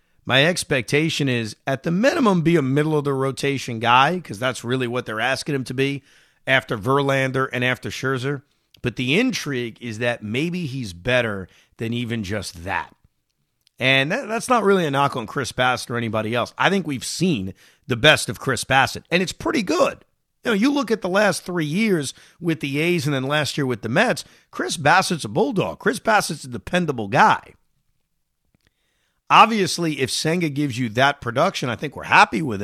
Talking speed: 185 wpm